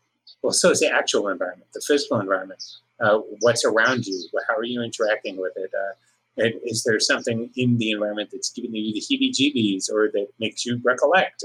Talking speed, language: 185 wpm, English